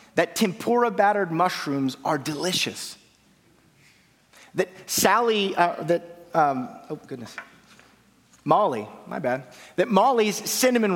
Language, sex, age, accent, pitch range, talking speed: English, male, 30-49, American, 155-220 Hz, 100 wpm